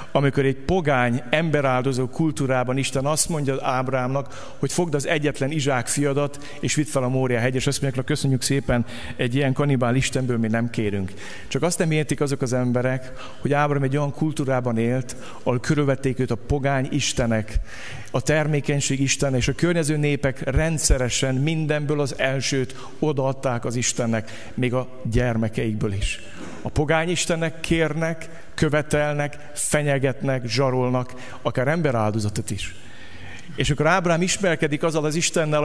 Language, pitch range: Hungarian, 125-150 Hz